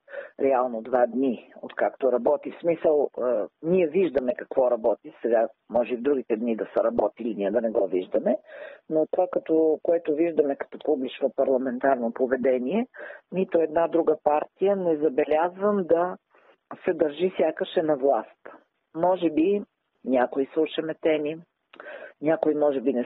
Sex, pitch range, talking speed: female, 145-190 Hz, 145 wpm